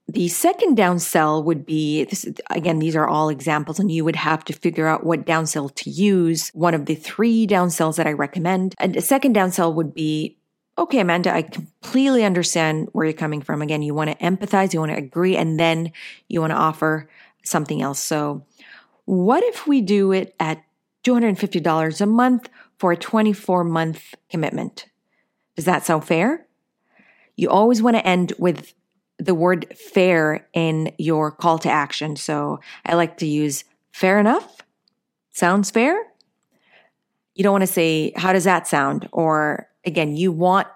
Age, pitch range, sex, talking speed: 40-59, 160-195 Hz, female, 170 wpm